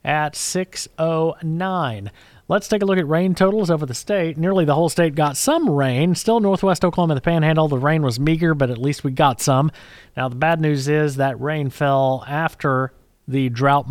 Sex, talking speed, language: male, 195 wpm, English